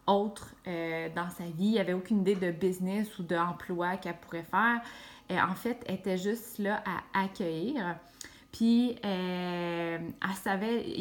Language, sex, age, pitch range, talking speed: French, female, 20-39, 180-220 Hz, 160 wpm